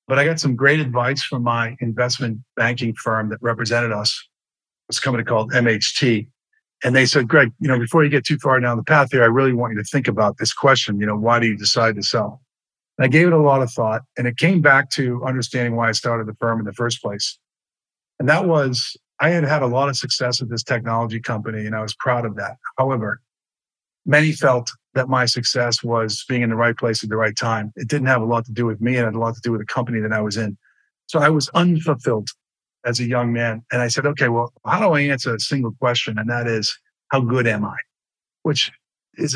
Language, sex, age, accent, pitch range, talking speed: English, male, 50-69, American, 115-135 Hz, 245 wpm